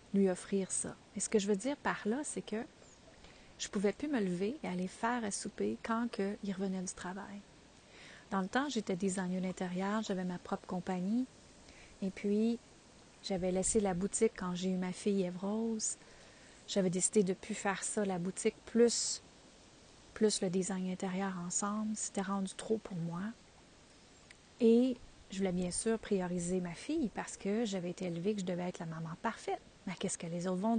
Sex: female